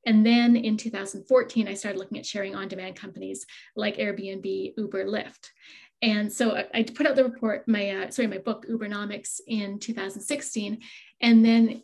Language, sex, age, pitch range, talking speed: English, female, 30-49, 205-240 Hz, 165 wpm